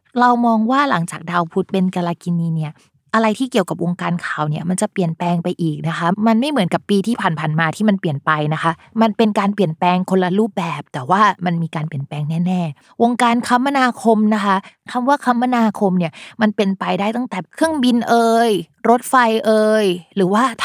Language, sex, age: Thai, female, 20-39